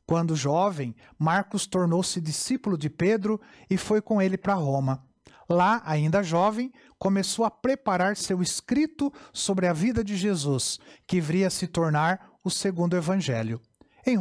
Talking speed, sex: 150 wpm, male